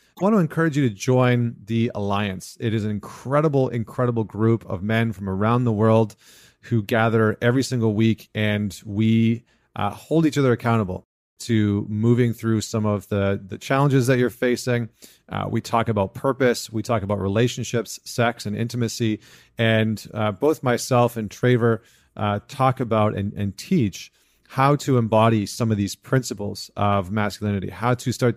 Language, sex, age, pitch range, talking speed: English, male, 30-49, 105-120 Hz, 170 wpm